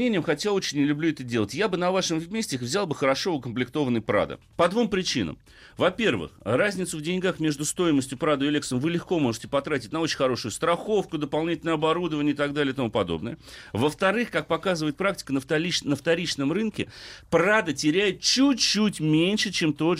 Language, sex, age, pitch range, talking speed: Russian, male, 40-59, 130-175 Hz, 180 wpm